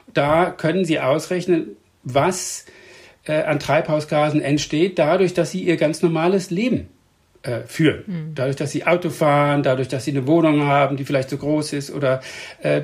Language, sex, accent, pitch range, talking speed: German, male, German, 145-175 Hz, 165 wpm